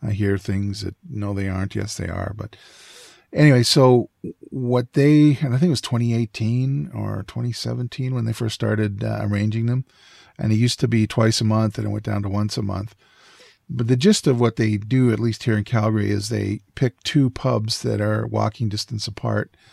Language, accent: English, American